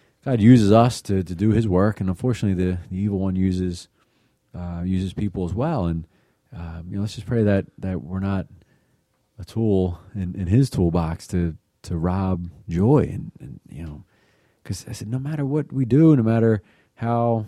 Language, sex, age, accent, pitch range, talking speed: English, male, 30-49, American, 85-110 Hz, 190 wpm